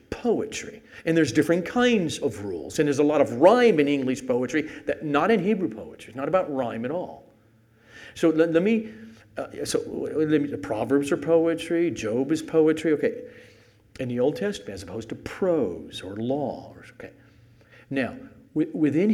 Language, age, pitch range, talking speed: English, 50-69, 115-165 Hz, 175 wpm